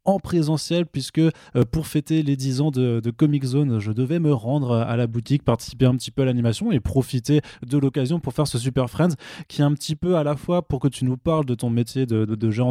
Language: French